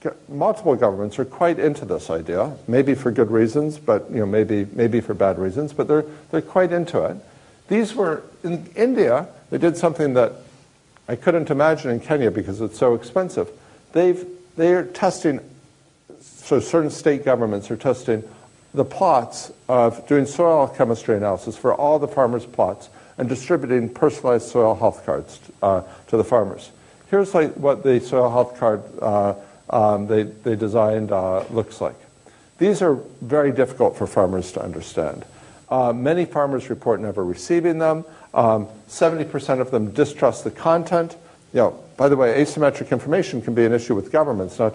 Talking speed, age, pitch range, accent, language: 170 wpm, 60-79, 115-160 Hz, American, English